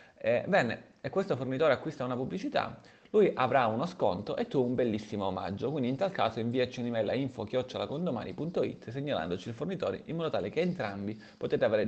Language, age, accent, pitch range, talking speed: Italian, 30-49, native, 110-130 Hz, 175 wpm